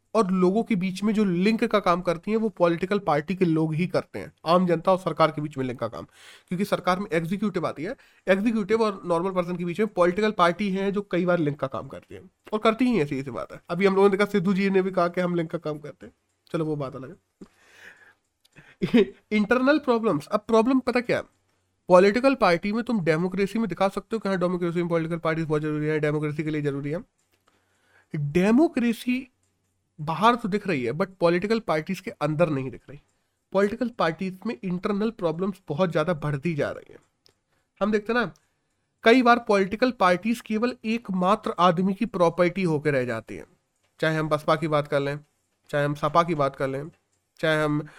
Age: 30-49